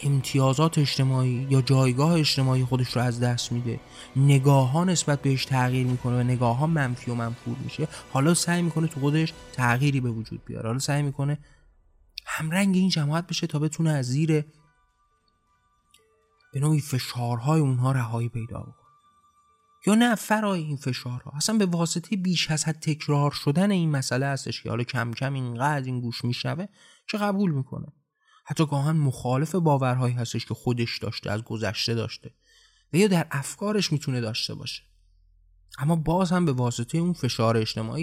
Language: Persian